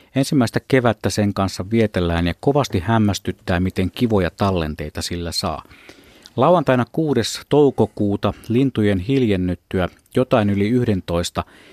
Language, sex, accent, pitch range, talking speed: Finnish, male, native, 95-125 Hz, 105 wpm